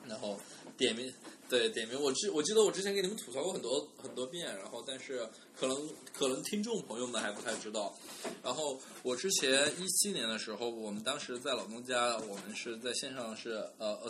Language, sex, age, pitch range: Chinese, male, 20-39, 115-160 Hz